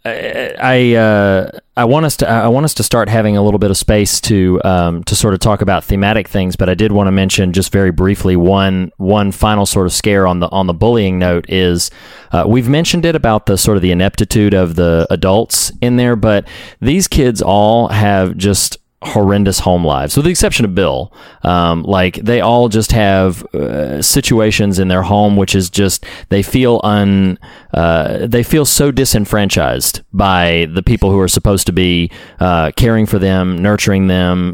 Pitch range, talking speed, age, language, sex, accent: 90-110 Hz, 195 wpm, 30-49, English, male, American